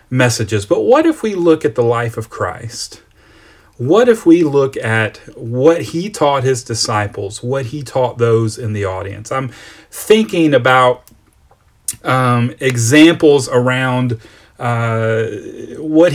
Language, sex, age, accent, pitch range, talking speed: English, male, 30-49, American, 105-130 Hz, 135 wpm